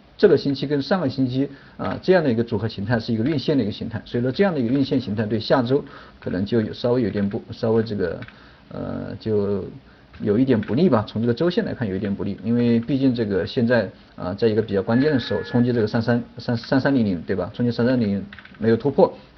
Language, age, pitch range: Chinese, 50-69, 105-130 Hz